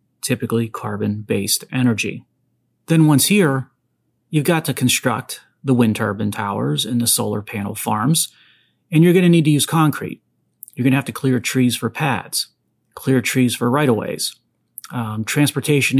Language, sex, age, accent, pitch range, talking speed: English, male, 30-49, American, 115-140 Hz, 155 wpm